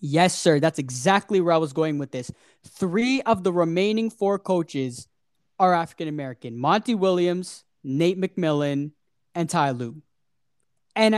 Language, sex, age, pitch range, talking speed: English, male, 20-39, 155-215 Hz, 140 wpm